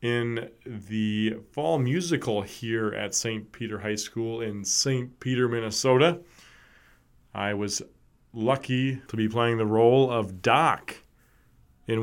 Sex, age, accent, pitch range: male, 30-49, American, 110-135 Hz